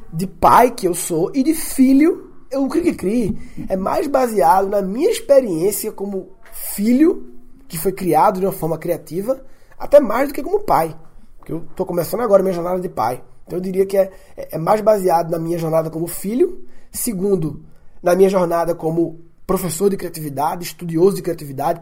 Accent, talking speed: Brazilian, 180 wpm